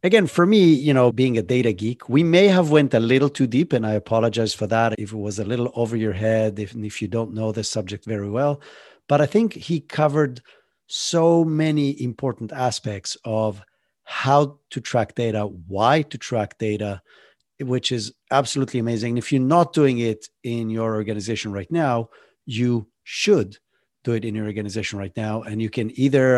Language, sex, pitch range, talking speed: English, male, 110-140 Hz, 190 wpm